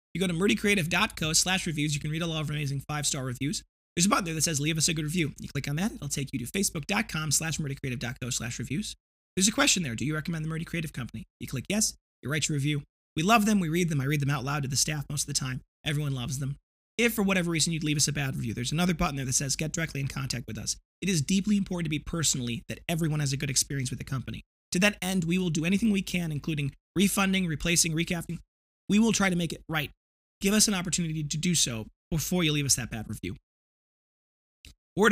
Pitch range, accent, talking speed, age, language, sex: 140-180 Hz, American, 260 wpm, 20-39, English, male